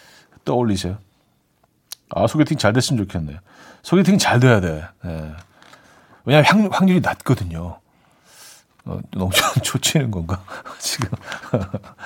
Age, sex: 40-59, male